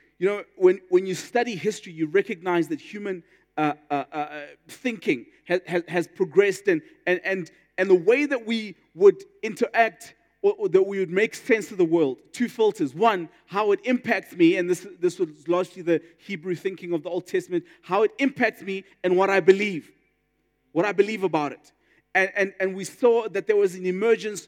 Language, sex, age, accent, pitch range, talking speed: English, male, 30-49, South African, 185-265 Hz, 195 wpm